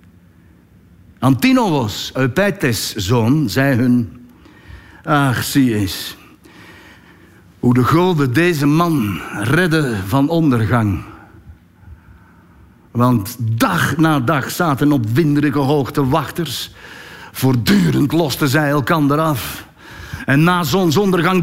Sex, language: male, Dutch